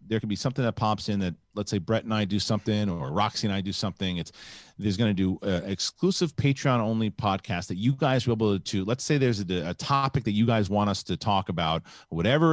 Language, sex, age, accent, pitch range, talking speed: English, male, 40-59, American, 90-115 Hz, 255 wpm